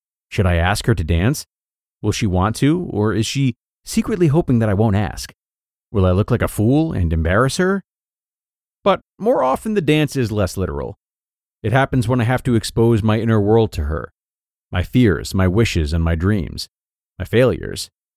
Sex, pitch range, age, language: male, 90-115 Hz, 30-49, English